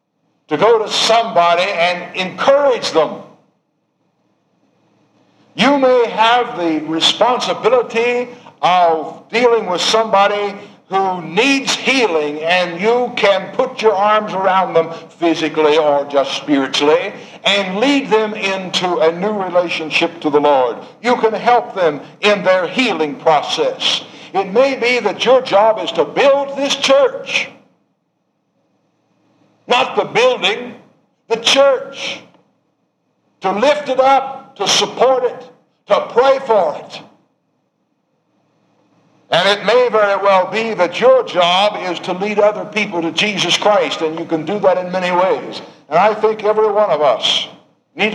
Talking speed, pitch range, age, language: 135 wpm, 180-250 Hz, 60-79, English